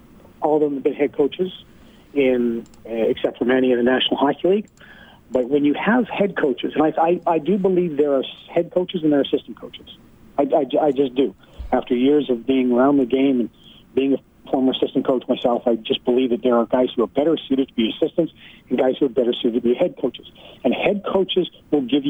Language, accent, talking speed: English, American, 235 wpm